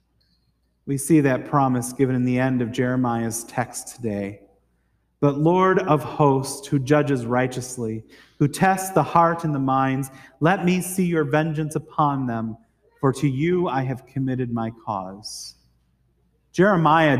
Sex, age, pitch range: male, 30-49, 120-165 Hz